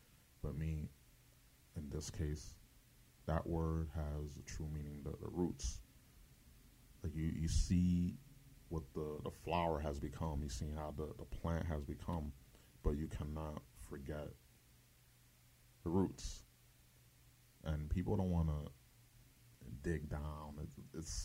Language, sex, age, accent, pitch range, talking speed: English, male, 30-49, American, 75-85 Hz, 130 wpm